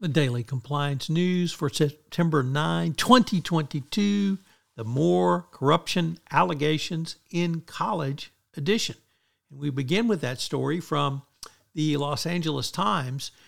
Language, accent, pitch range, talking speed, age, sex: English, American, 135-165 Hz, 115 wpm, 60-79, male